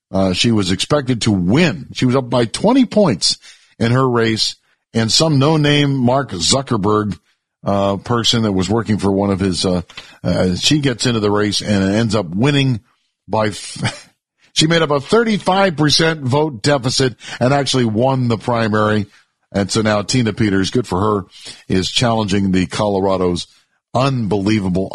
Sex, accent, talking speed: male, American, 160 wpm